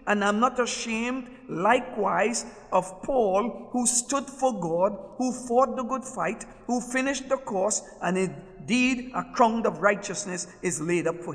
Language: English